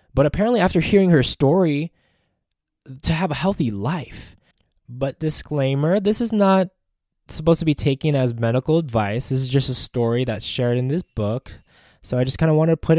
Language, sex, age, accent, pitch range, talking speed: English, male, 20-39, American, 120-160 Hz, 190 wpm